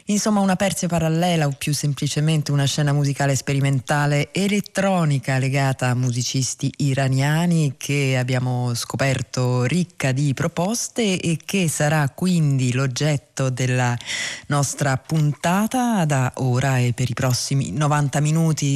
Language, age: Italian, 20-39